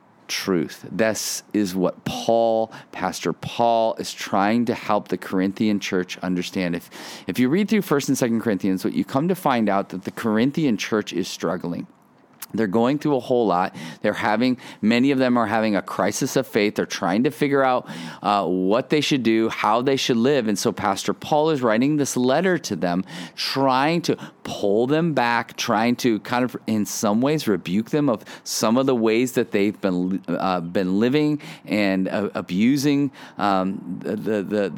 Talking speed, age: 190 wpm, 40-59